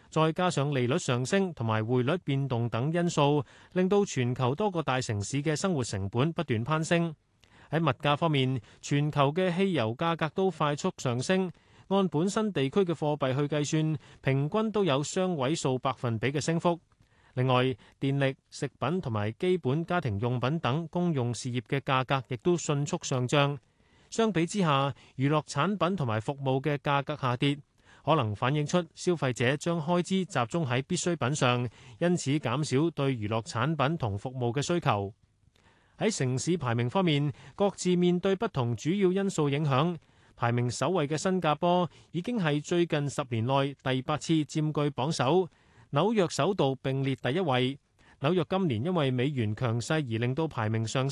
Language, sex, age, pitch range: Chinese, male, 30-49, 125-170 Hz